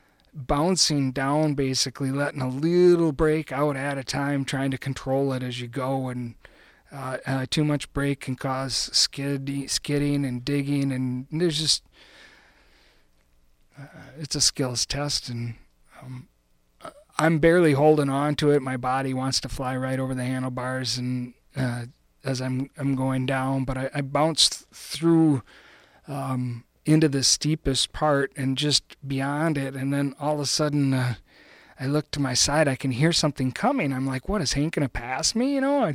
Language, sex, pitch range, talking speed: English, male, 130-160 Hz, 175 wpm